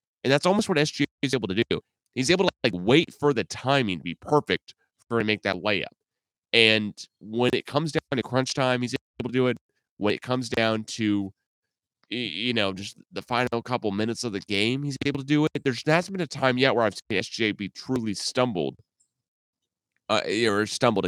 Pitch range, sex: 95-125 Hz, male